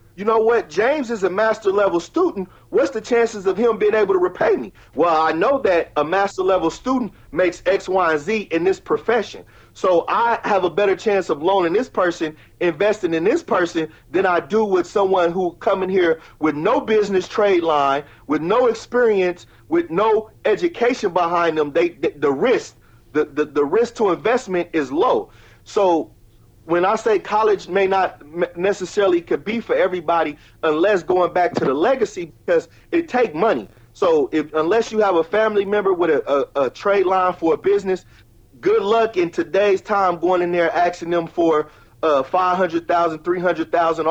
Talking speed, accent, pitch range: 180 wpm, American, 160-210 Hz